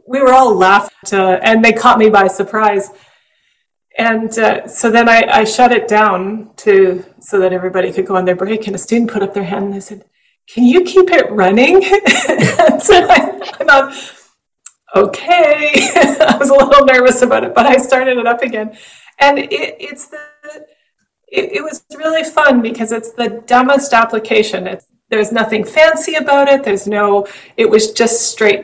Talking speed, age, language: 185 wpm, 30-49, English